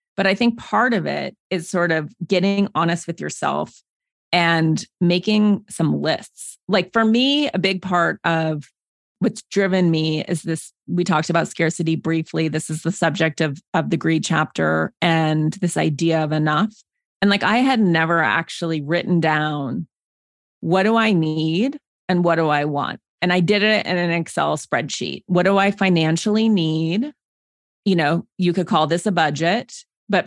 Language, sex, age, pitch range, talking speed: English, female, 30-49, 165-205 Hz, 175 wpm